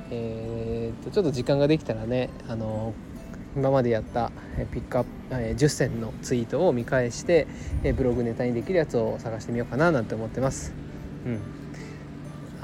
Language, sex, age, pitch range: Japanese, male, 20-39, 115-150 Hz